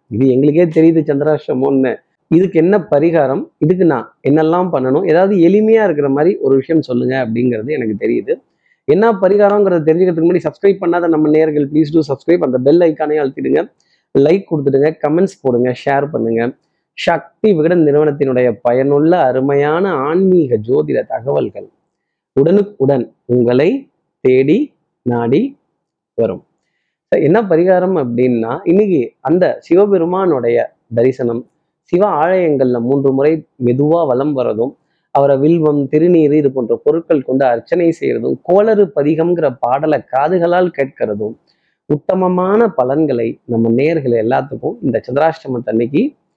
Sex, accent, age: male, native, 30-49